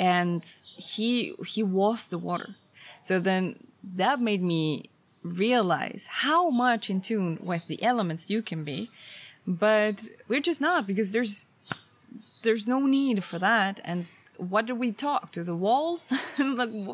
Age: 20-39